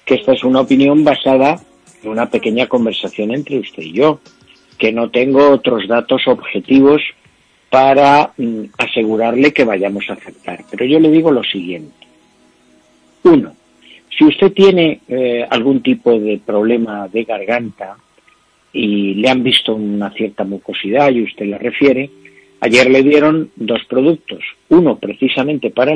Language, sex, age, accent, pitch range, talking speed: Spanish, male, 50-69, Spanish, 105-145 Hz, 145 wpm